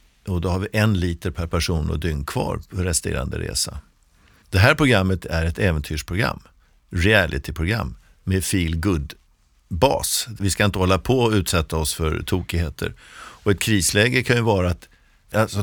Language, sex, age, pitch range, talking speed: Swedish, male, 60-79, 80-100 Hz, 155 wpm